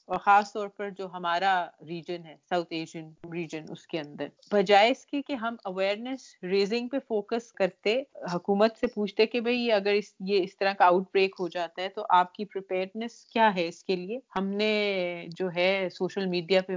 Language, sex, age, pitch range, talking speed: Urdu, female, 40-59, 170-200 Hz, 195 wpm